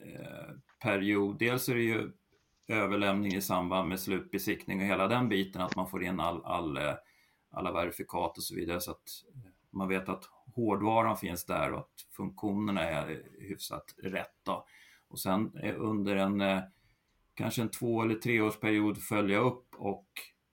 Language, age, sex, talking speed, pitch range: Swedish, 40-59, male, 150 wpm, 95-110 Hz